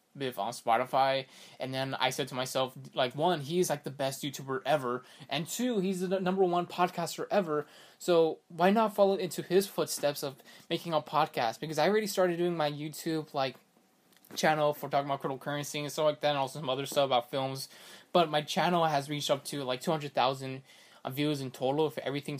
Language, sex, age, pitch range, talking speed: English, male, 20-39, 135-170 Hz, 200 wpm